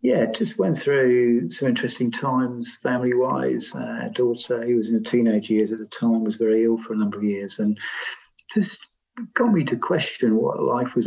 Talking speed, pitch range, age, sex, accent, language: 195 wpm, 110-125 Hz, 50-69, male, British, English